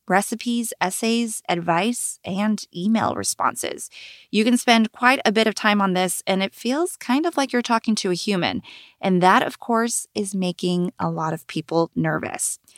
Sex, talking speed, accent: female, 180 wpm, American